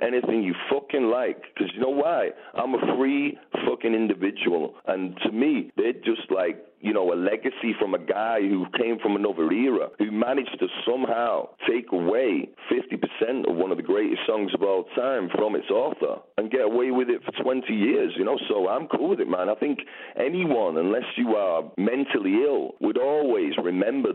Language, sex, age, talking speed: English, male, 40-59, 190 wpm